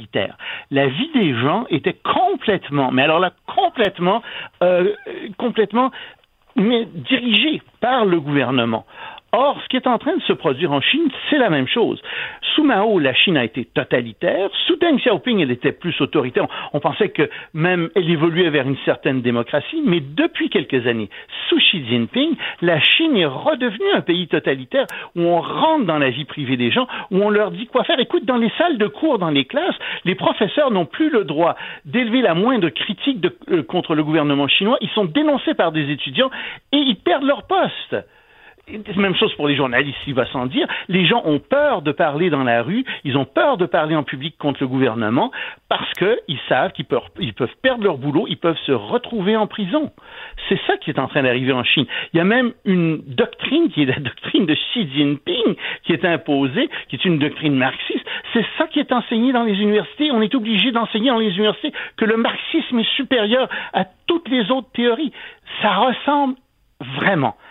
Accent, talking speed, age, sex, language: French, 195 wpm, 60-79, male, French